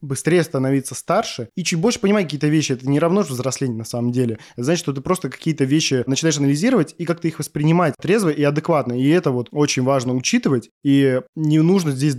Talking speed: 210 wpm